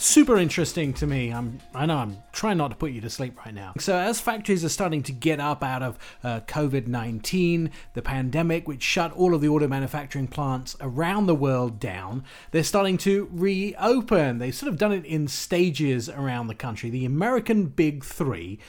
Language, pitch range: English, 135-180 Hz